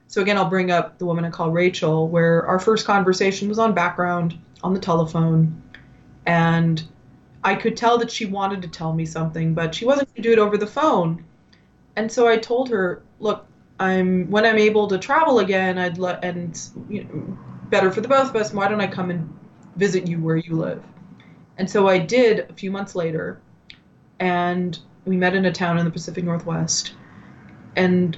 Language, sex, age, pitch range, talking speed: English, female, 20-39, 165-205 Hz, 200 wpm